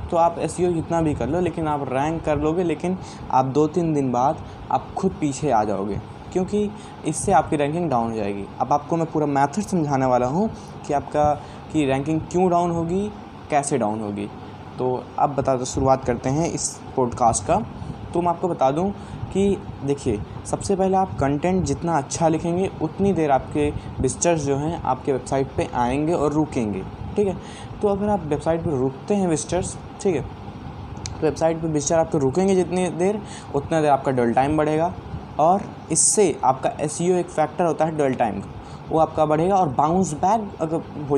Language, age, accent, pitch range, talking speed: Hindi, 20-39, native, 130-170 Hz, 190 wpm